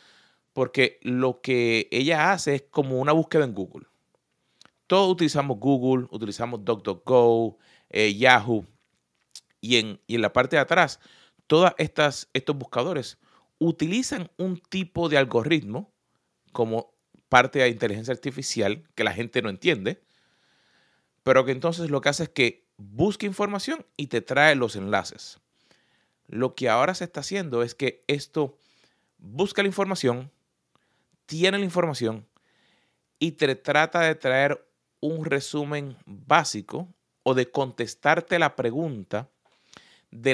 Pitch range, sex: 120-160 Hz, male